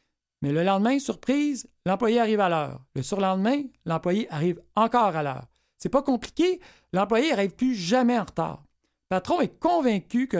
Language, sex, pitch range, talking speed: French, male, 175-245 Hz, 175 wpm